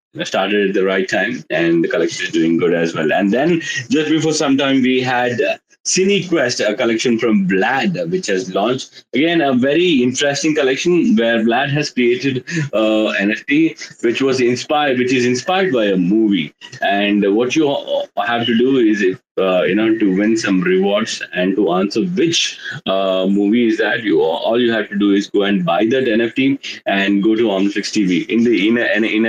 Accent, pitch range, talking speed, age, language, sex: Indian, 105-155 Hz, 190 wpm, 30-49, English, male